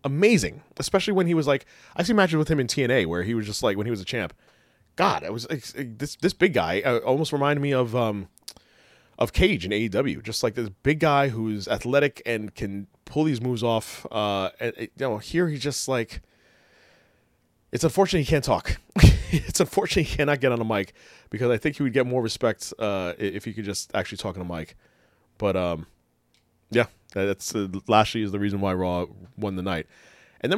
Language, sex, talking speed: English, male, 215 wpm